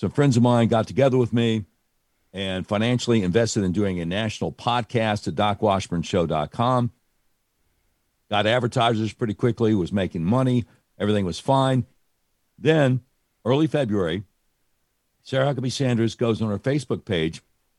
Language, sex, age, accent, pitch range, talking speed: English, male, 60-79, American, 90-120 Hz, 130 wpm